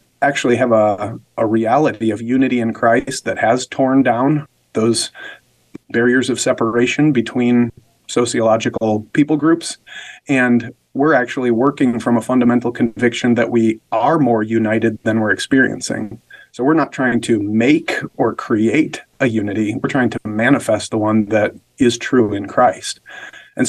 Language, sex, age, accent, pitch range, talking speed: English, male, 30-49, American, 110-135 Hz, 150 wpm